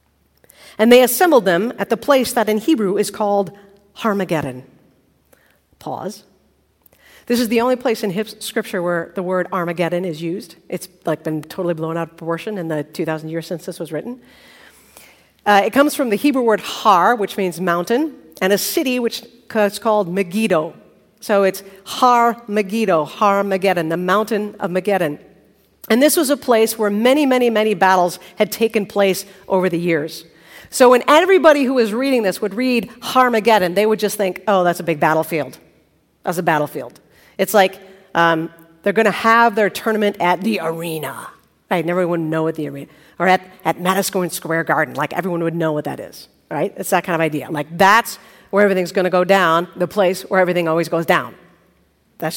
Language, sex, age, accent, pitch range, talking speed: English, female, 50-69, American, 170-220 Hz, 185 wpm